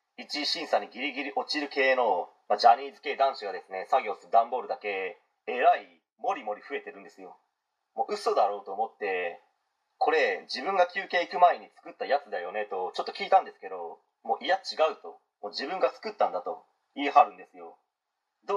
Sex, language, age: male, Japanese, 30-49